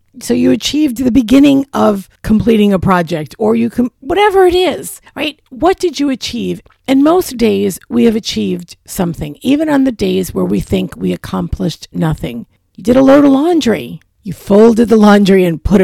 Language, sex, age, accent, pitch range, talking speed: English, female, 50-69, American, 170-260 Hz, 185 wpm